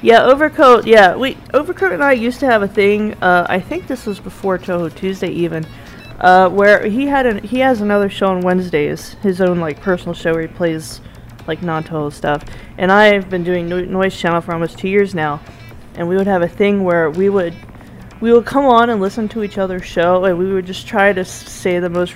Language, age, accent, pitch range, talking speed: English, 20-39, American, 130-205 Hz, 220 wpm